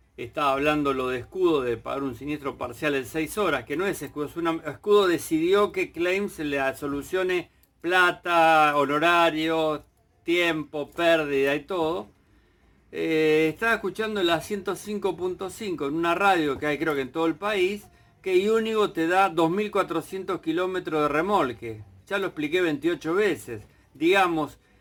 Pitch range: 150-205 Hz